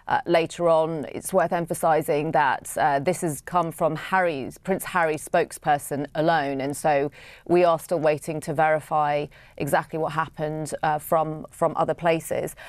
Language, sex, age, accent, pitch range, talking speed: English, female, 30-49, British, 160-185 Hz, 150 wpm